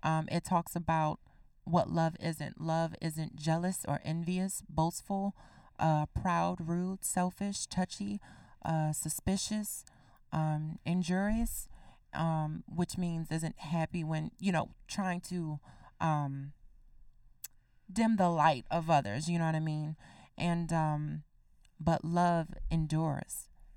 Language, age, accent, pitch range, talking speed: English, 30-49, American, 150-170 Hz, 120 wpm